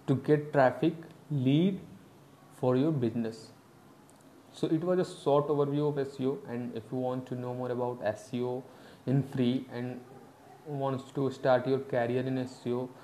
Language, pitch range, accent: English, 125-140 Hz, Indian